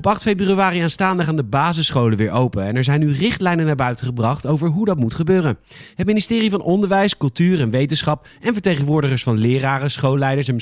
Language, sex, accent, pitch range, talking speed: Dutch, male, Dutch, 130-185 Hz, 200 wpm